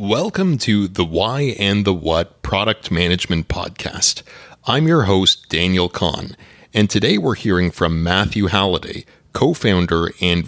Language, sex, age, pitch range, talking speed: English, male, 30-49, 90-115 Hz, 135 wpm